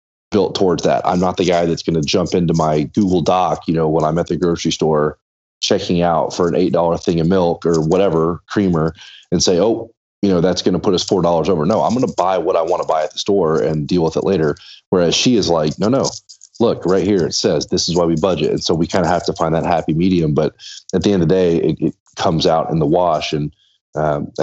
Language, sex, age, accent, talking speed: English, male, 30-49, American, 265 wpm